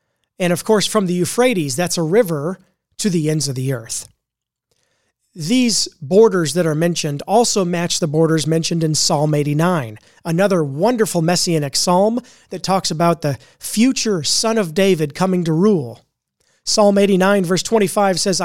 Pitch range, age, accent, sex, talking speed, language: 155-195 Hz, 30-49, American, male, 155 wpm, English